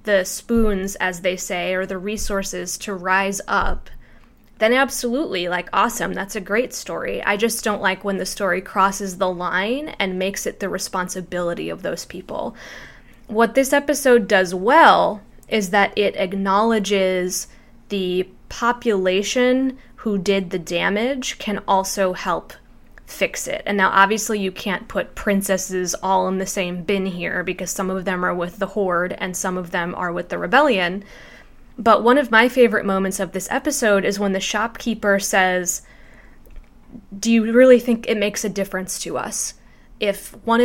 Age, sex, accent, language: 20-39, female, American, English